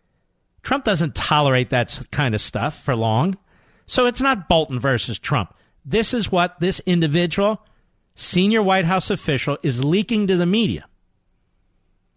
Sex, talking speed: male, 145 wpm